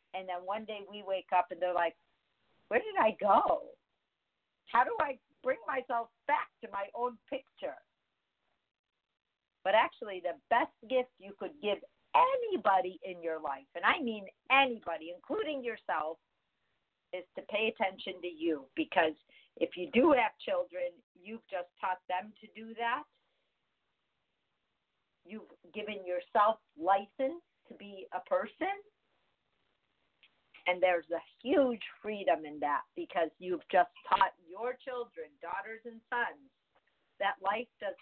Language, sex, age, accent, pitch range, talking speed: English, female, 50-69, American, 180-255 Hz, 140 wpm